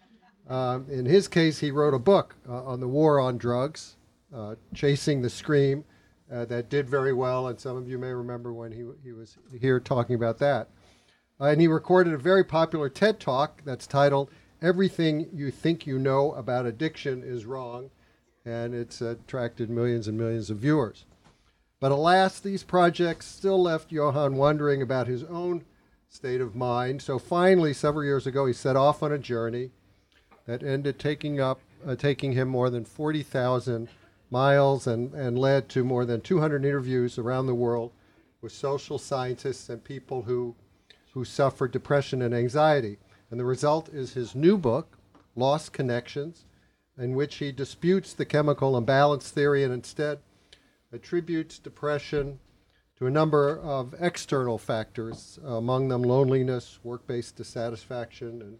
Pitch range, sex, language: 120-150 Hz, male, English